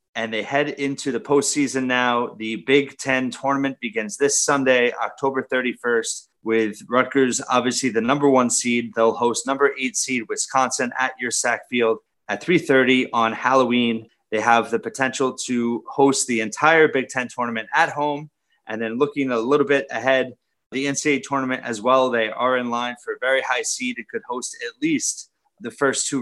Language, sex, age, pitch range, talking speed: English, male, 30-49, 120-140 Hz, 180 wpm